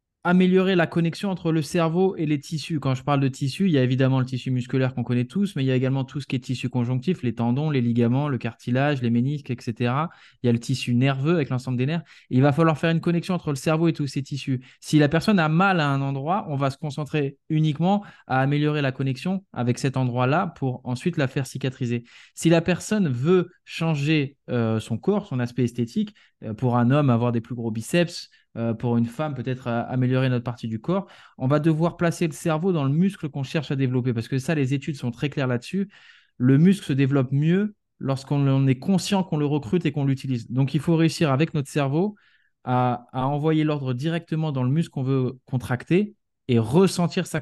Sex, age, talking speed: male, 20-39, 225 wpm